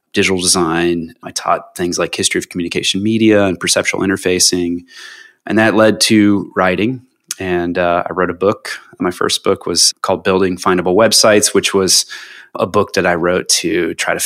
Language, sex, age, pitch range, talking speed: English, male, 30-49, 90-105 Hz, 175 wpm